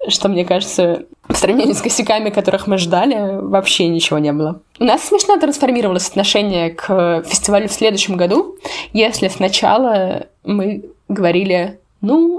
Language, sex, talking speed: Russian, female, 140 wpm